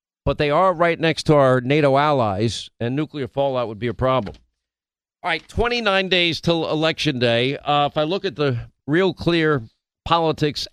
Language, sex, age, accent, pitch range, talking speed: English, male, 50-69, American, 125-160 Hz, 180 wpm